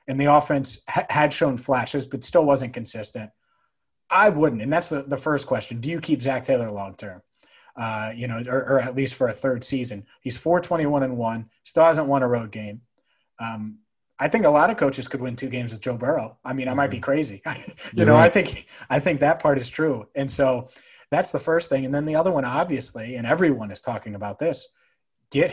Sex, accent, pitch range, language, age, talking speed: male, American, 125-155 Hz, English, 30-49, 230 wpm